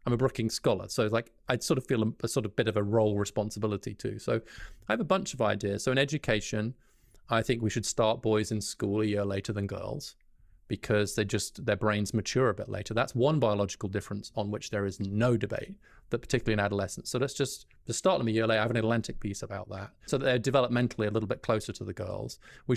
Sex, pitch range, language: male, 105-130 Hz, English